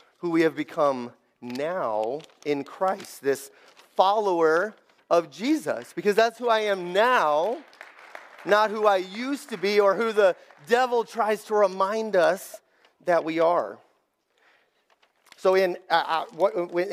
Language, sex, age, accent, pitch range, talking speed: English, male, 30-49, American, 165-215 Hz, 130 wpm